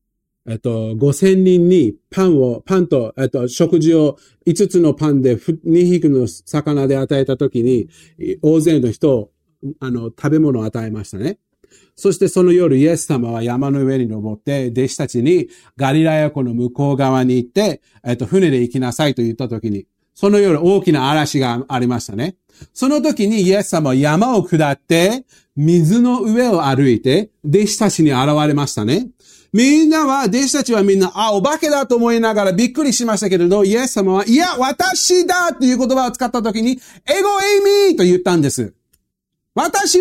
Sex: male